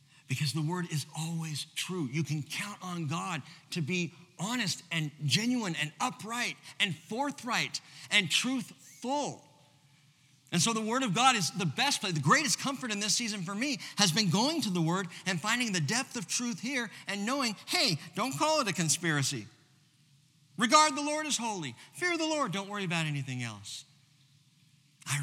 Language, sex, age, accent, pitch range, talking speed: English, male, 50-69, American, 135-185 Hz, 180 wpm